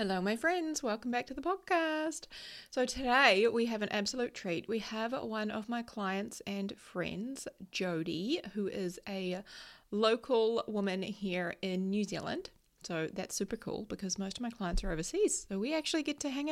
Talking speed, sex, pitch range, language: 180 wpm, female, 180-235 Hz, English